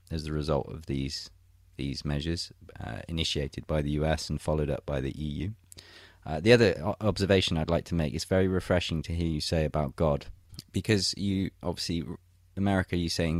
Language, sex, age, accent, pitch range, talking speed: English, male, 20-39, British, 80-95 Hz, 190 wpm